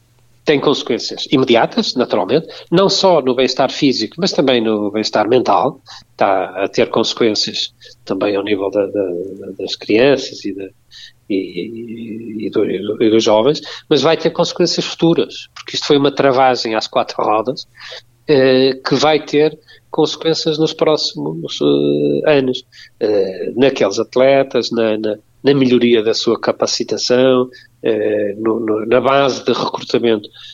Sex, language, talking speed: male, Portuguese, 125 wpm